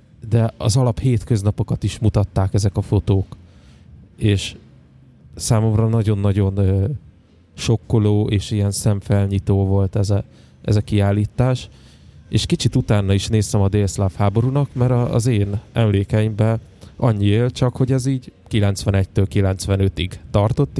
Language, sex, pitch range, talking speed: Hungarian, male, 100-115 Hz, 125 wpm